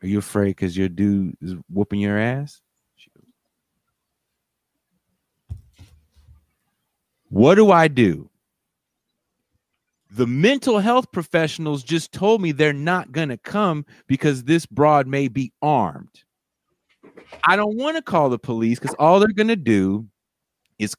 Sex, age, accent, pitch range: male, 30-49, American, 110-180 Hz